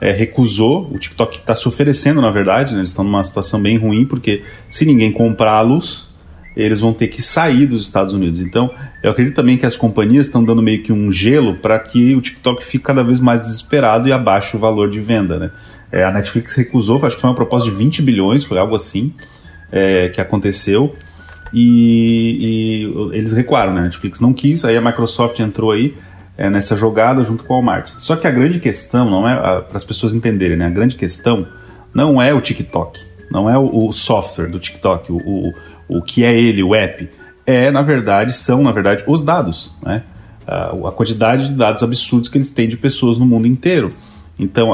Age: 30-49